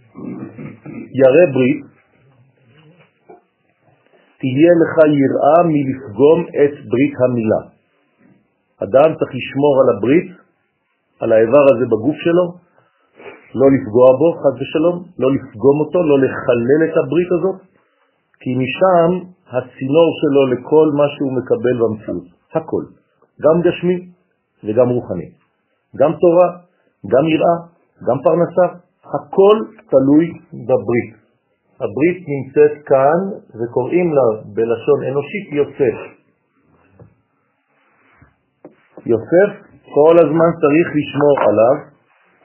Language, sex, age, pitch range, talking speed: French, male, 50-69, 135-170 Hz, 90 wpm